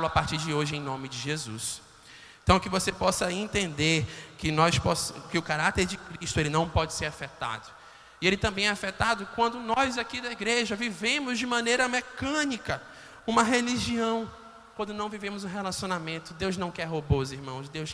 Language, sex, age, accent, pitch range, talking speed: Portuguese, male, 20-39, Brazilian, 145-185 Hz, 175 wpm